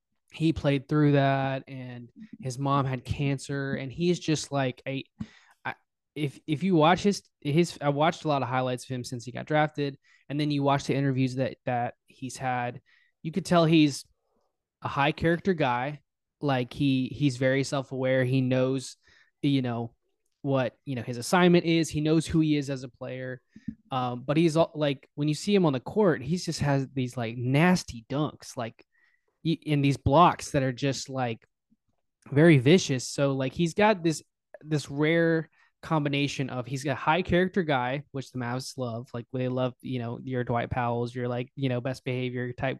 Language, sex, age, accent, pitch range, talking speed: English, male, 20-39, American, 130-165 Hz, 190 wpm